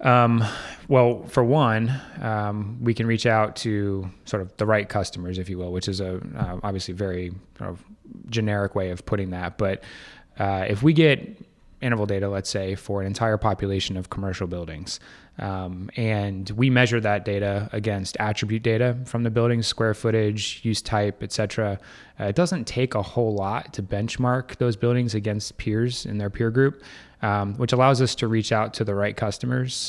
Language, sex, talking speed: English, male, 185 wpm